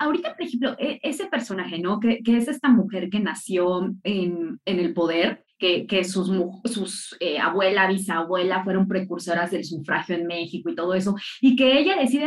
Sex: female